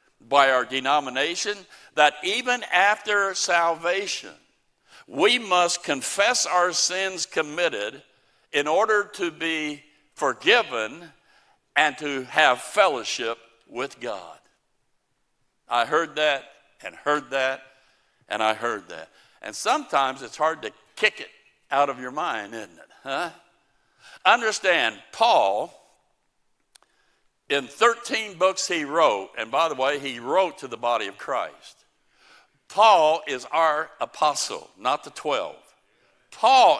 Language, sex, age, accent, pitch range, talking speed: English, male, 60-79, American, 140-205 Hz, 120 wpm